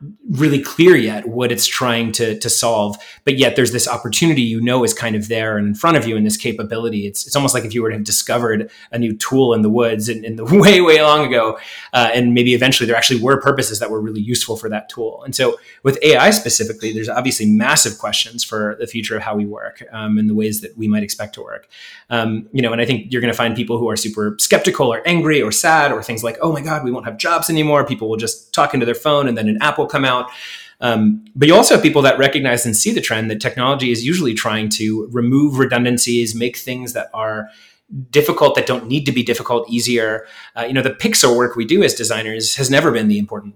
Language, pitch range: English, 110-130 Hz